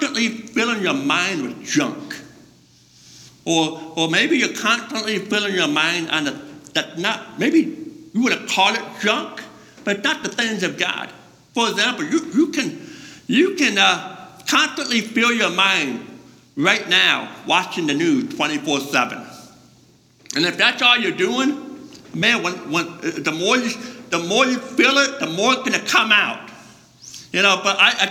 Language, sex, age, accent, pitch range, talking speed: English, male, 60-79, American, 215-300 Hz, 165 wpm